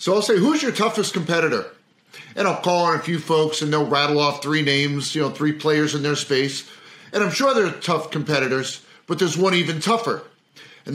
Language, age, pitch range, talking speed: English, 50-69, 145-195 Hz, 215 wpm